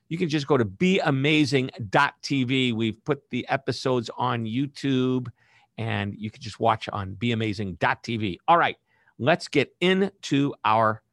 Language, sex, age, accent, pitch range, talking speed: English, male, 50-69, American, 110-150 Hz, 135 wpm